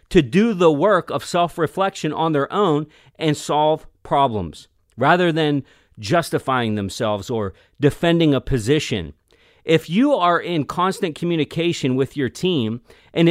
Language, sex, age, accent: English, male, 40-59, American